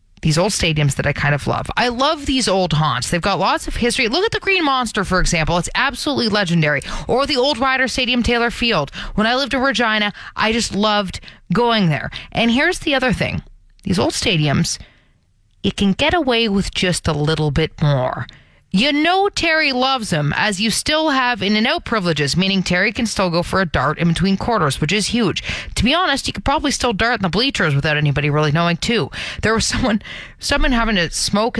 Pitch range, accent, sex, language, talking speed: 165-250 Hz, American, female, English, 210 wpm